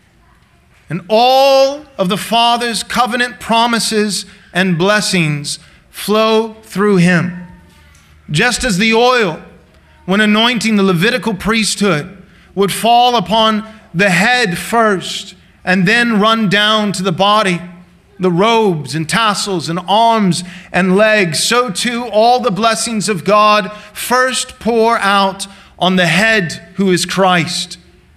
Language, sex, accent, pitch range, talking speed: English, male, American, 180-225 Hz, 125 wpm